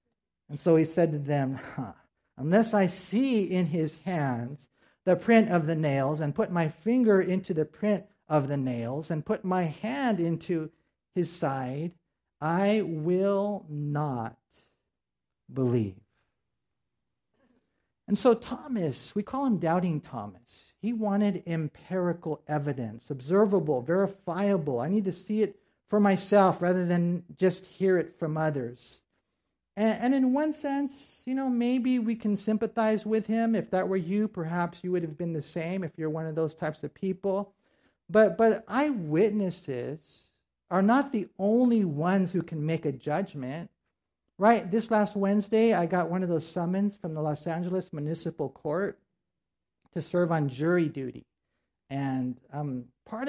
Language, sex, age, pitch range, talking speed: English, male, 50-69, 150-205 Hz, 150 wpm